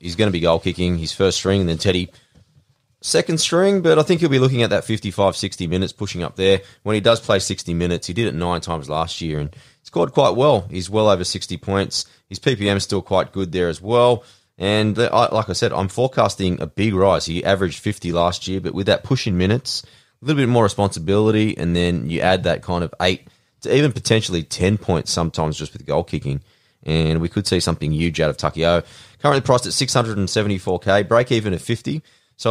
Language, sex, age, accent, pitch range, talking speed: English, male, 20-39, Australian, 85-105 Hz, 220 wpm